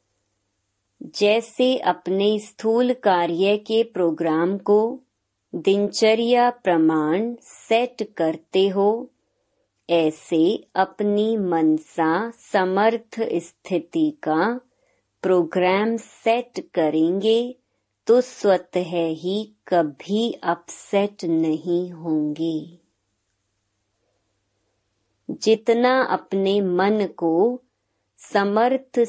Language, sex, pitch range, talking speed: Hindi, male, 165-225 Hz, 70 wpm